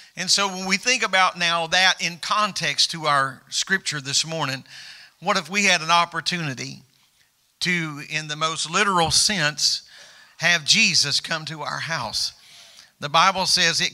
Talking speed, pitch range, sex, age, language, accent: 160 wpm, 160-185 Hz, male, 50-69, English, American